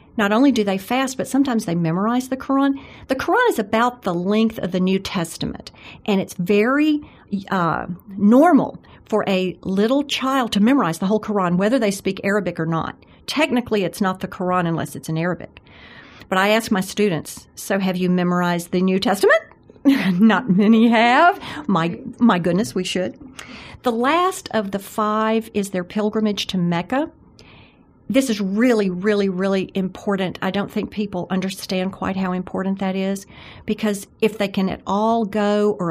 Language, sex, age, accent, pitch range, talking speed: English, female, 50-69, American, 185-225 Hz, 175 wpm